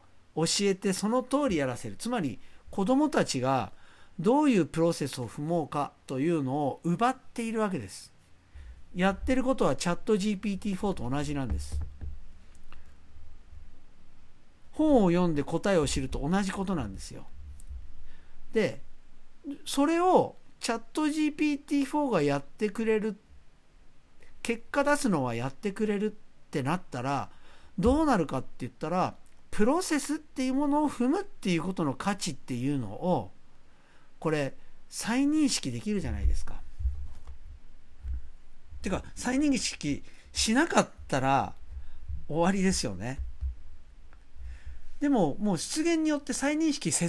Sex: male